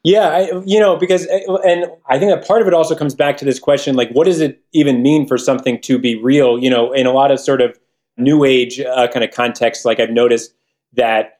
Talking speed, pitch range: 240 wpm, 115-140 Hz